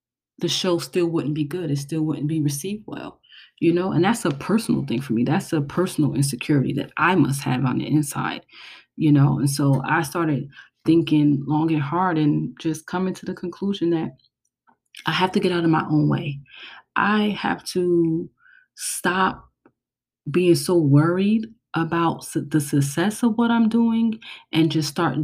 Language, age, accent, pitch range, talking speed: English, 30-49, American, 145-170 Hz, 180 wpm